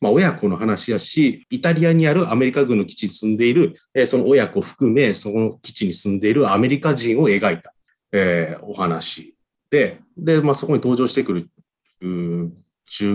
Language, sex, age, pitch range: Japanese, male, 40-59, 95-150 Hz